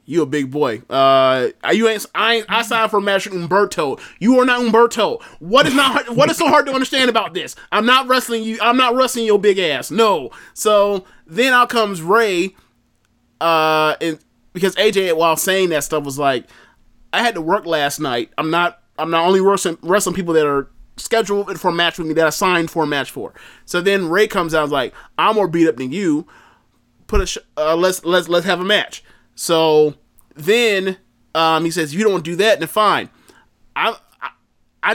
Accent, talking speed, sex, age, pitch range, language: American, 215 wpm, male, 20-39, 155-220 Hz, English